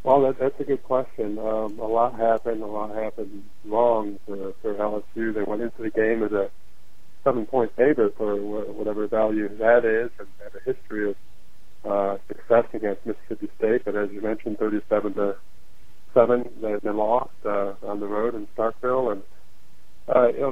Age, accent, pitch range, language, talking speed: 30-49, American, 105-120 Hz, English, 180 wpm